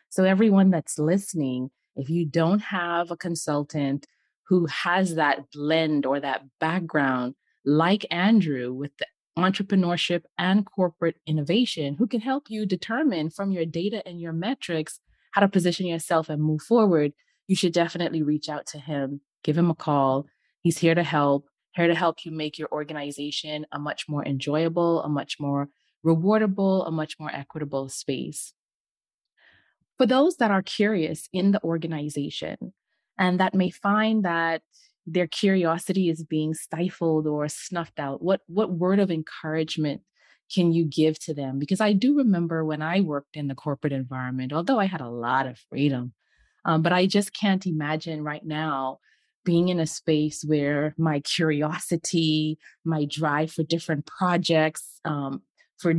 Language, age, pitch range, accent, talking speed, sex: English, 20-39, 150-185 Hz, American, 160 wpm, female